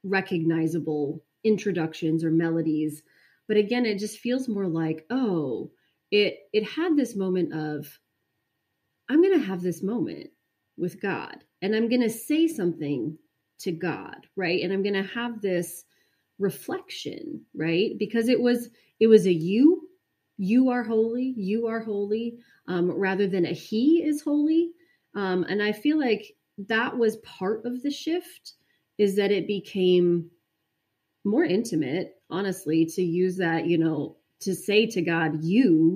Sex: female